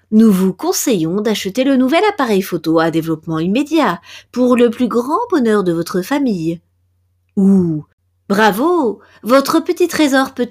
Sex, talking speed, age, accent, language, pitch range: female, 145 wpm, 40-59, French, French, 160-255 Hz